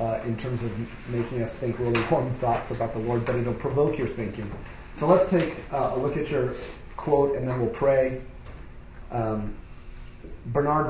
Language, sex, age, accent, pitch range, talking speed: English, male, 40-59, American, 105-125 Hz, 185 wpm